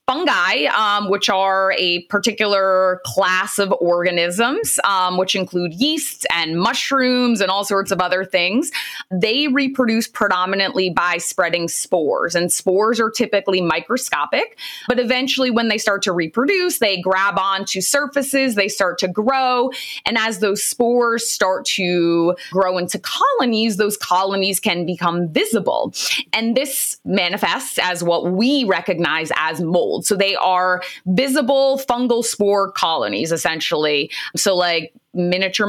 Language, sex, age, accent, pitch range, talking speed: English, female, 20-39, American, 180-255 Hz, 135 wpm